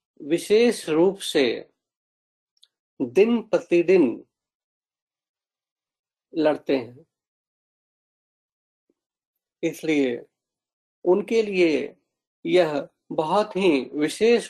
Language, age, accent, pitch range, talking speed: Hindi, 50-69, native, 140-180 Hz, 60 wpm